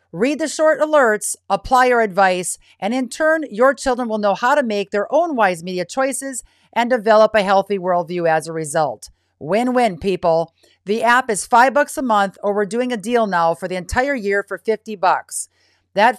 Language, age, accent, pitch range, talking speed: English, 50-69, American, 160-225 Hz, 195 wpm